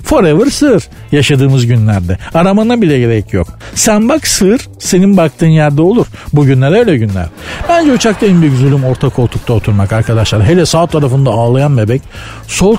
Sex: male